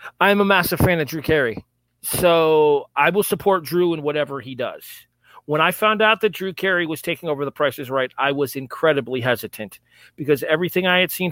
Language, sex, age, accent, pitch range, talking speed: English, male, 40-59, American, 125-170 Hz, 205 wpm